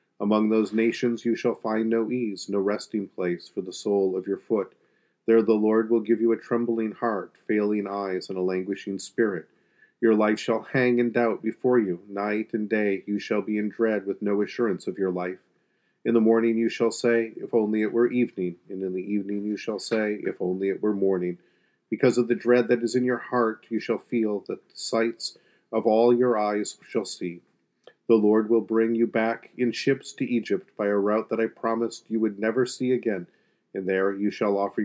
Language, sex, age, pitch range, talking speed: English, male, 40-59, 100-115 Hz, 215 wpm